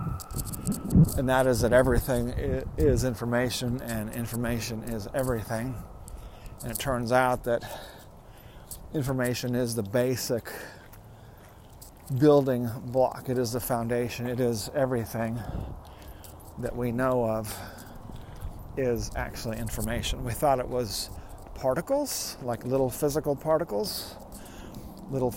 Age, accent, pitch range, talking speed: 40-59, American, 100-125 Hz, 110 wpm